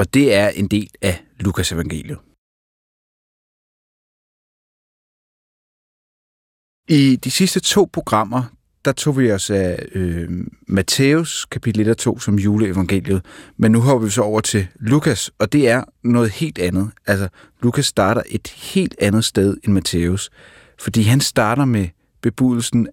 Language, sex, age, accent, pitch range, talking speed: Danish, male, 30-49, native, 100-130 Hz, 140 wpm